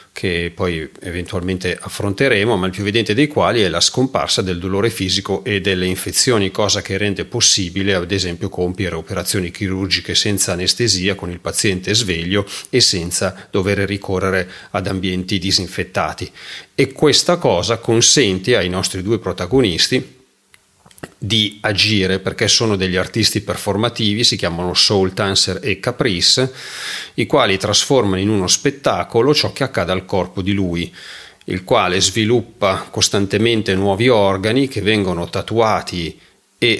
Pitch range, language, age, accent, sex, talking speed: 95-115 Hz, Italian, 40-59, native, male, 140 wpm